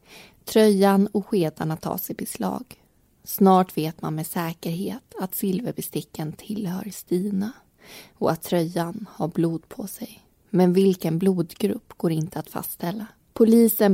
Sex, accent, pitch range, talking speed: female, native, 175-205 Hz, 130 wpm